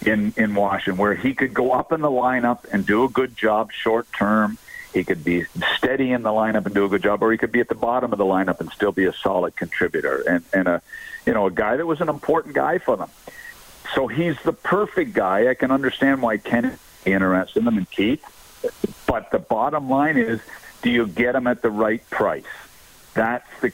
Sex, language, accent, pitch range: male, English, American, 105-130 Hz